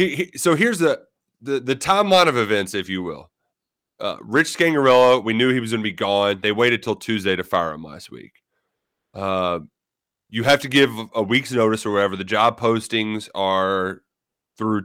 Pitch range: 100-140 Hz